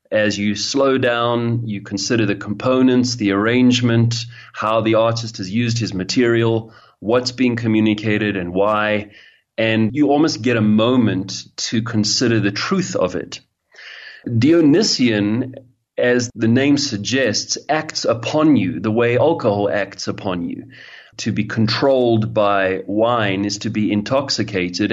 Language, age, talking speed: English, 30-49, 135 wpm